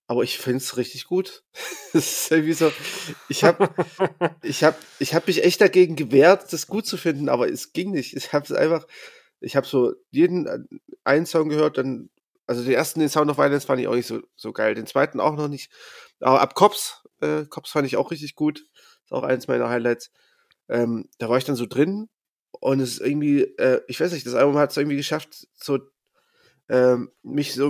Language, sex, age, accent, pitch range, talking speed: German, male, 30-49, German, 125-175 Hz, 210 wpm